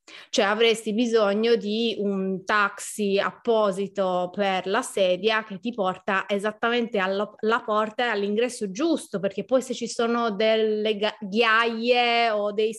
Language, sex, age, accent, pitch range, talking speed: Italian, female, 20-39, native, 200-245 Hz, 135 wpm